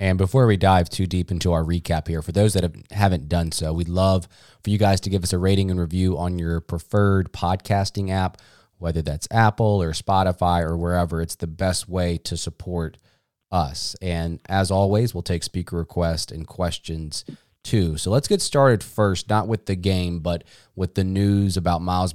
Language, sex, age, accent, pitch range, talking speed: English, male, 20-39, American, 85-105 Hz, 195 wpm